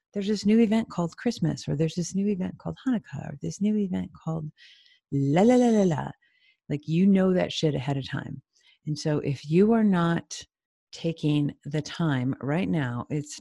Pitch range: 145-180 Hz